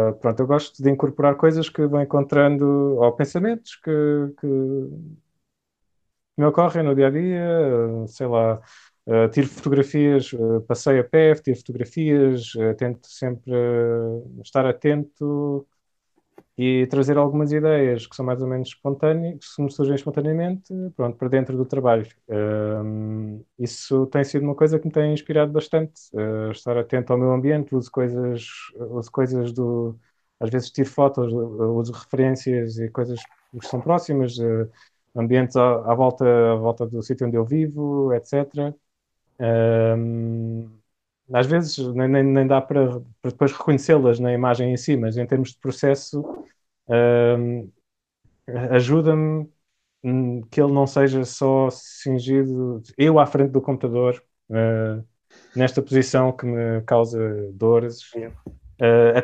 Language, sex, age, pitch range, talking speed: English, male, 20-39, 120-145 Hz, 140 wpm